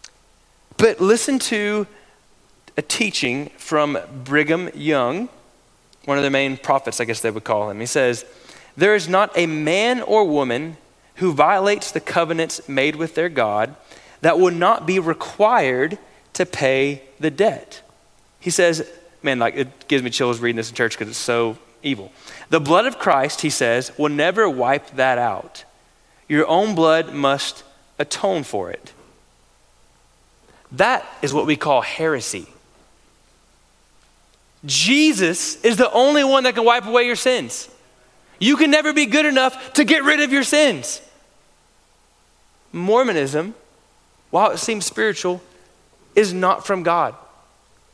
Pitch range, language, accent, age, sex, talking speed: 135-215 Hz, English, American, 30-49, male, 145 wpm